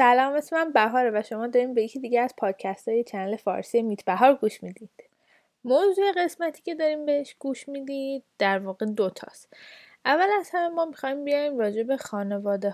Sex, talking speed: female, 175 wpm